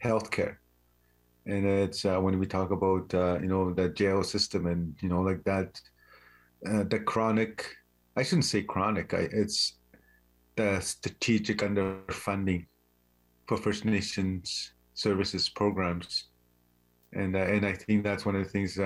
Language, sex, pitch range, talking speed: English, male, 85-100 Hz, 145 wpm